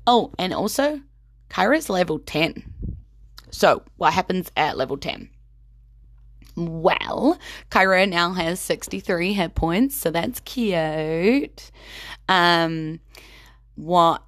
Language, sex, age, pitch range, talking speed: English, female, 20-39, 165-210 Hz, 100 wpm